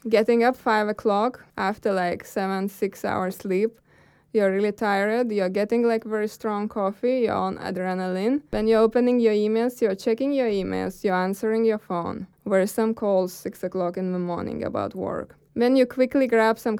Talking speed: 180 wpm